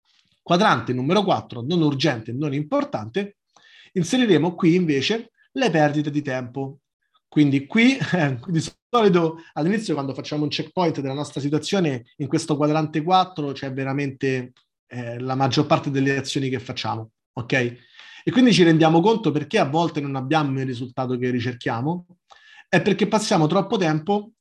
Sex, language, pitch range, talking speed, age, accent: male, Italian, 130-170 Hz, 150 wpm, 30-49, native